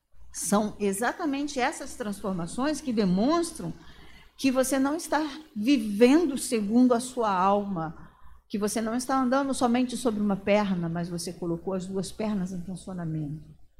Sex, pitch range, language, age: female, 210-280 Hz, Portuguese, 50-69